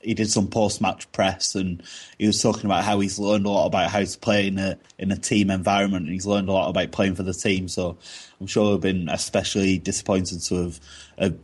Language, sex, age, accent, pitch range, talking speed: English, male, 20-39, British, 90-105 Hz, 230 wpm